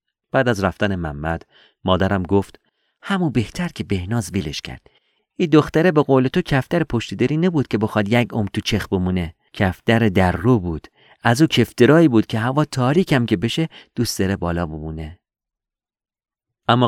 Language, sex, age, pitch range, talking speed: Persian, male, 40-59, 90-135 Hz, 160 wpm